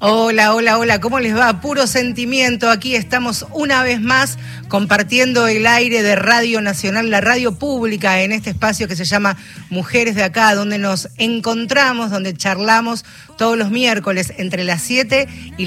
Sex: female